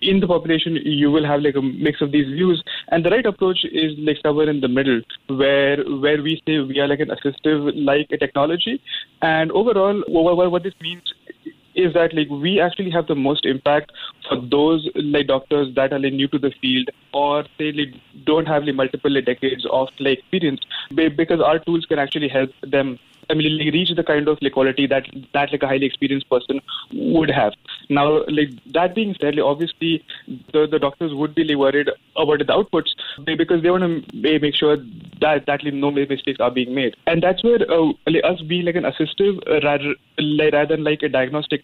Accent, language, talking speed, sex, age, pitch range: Indian, English, 210 wpm, male, 20-39, 140-165 Hz